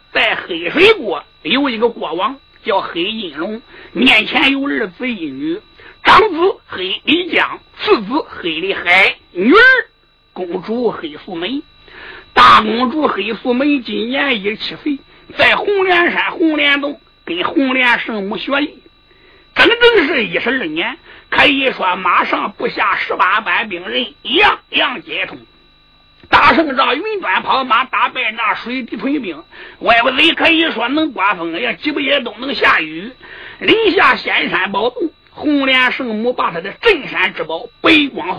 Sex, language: male, Chinese